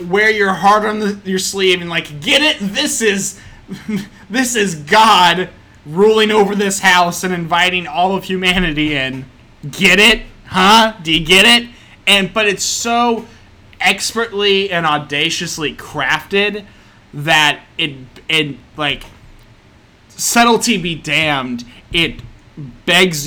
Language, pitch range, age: English, 130-185 Hz, 20-39